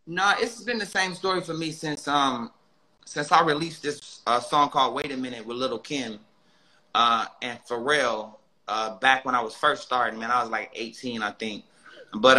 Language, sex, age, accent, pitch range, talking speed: English, male, 30-49, American, 115-145 Hz, 205 wpm